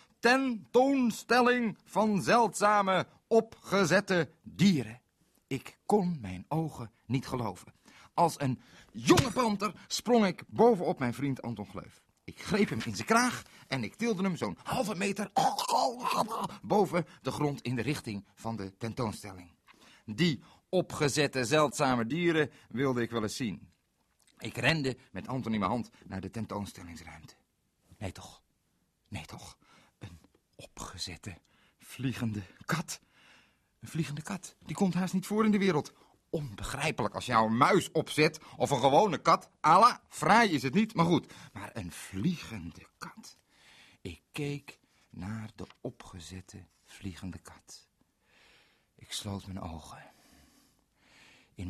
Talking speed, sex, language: 130 wpm, male, Dutch